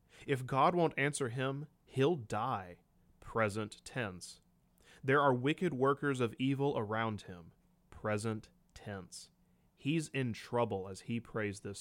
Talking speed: 130 wpm